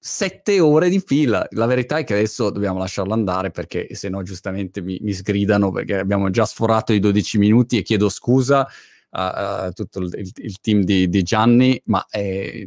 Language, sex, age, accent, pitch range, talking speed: Italian, male, 20-39, native, 95-125 Hz, 190 wpm